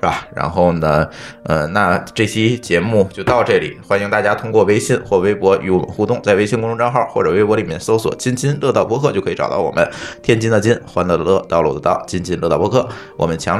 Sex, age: male, 20-39